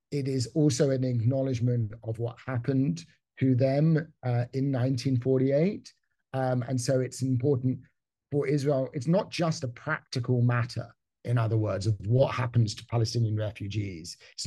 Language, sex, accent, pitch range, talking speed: English, male, British, 120-145 Hz, 145 wpm